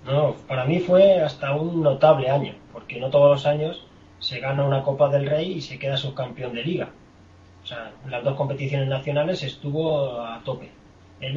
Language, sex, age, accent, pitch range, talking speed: Spanish, male, 20-39, Spanish, 135-155 Hz, 185 wpm